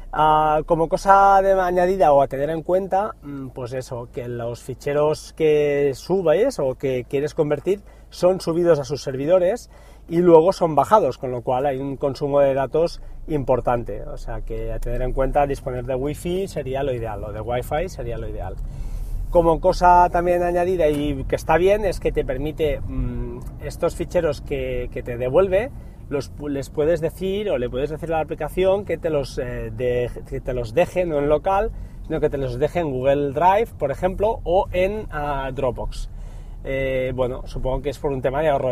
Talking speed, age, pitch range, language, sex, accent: 185 wpm, 30-49, 125-160 Hz, Spanish, male, Spanish